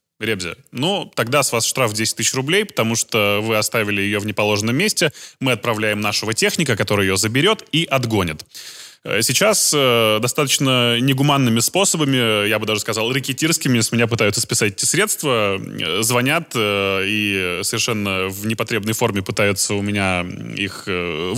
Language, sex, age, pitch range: Russian, male, 20-39, 105-135 Hz